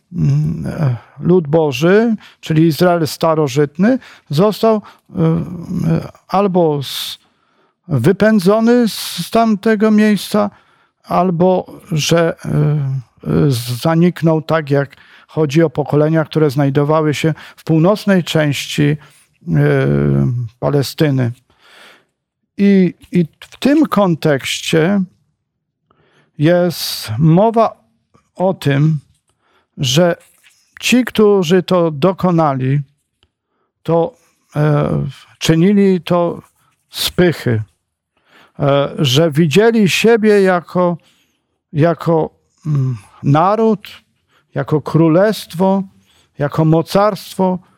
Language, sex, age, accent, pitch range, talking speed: Polish, male, 50-69, native, 150-190 Hz, 70 wpm